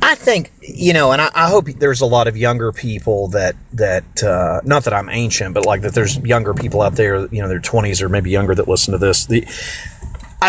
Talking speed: 245 wpm